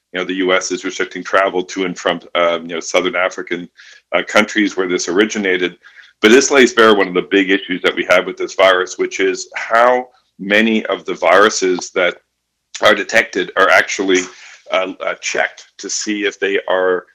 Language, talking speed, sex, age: English, 190 wpm, male, 50-69